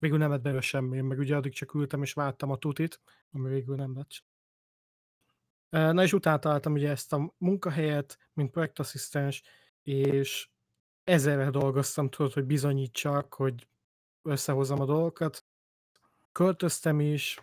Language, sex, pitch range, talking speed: Hungarian, male, 140-155 Hz, 140 wpm